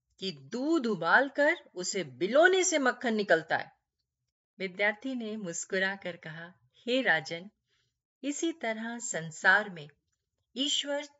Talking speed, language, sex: 105 wpm, Hindi, female